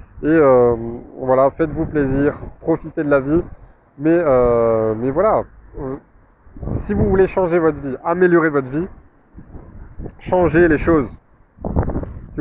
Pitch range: 120-160 Hz